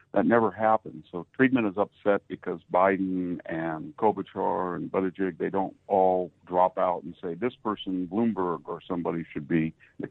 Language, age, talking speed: English, 60-79, 165 wpm